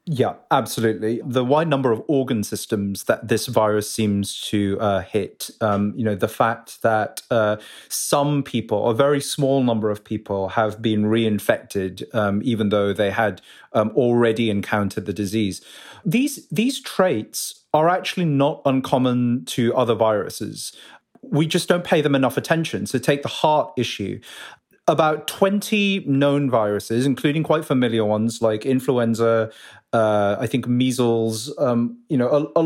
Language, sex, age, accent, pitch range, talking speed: English, male, 30-49, British, 110-145 Hz, 155 wpm